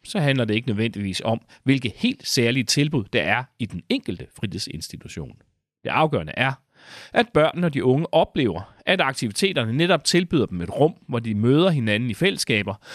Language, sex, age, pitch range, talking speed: Danish, male, 40-59, 110-180 Hz, 175 wpm